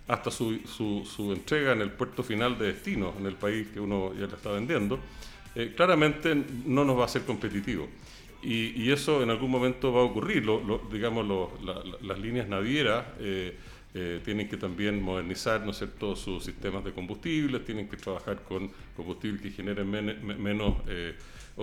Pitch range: 100-130 Hz